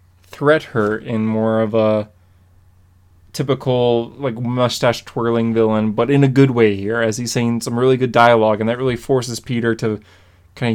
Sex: male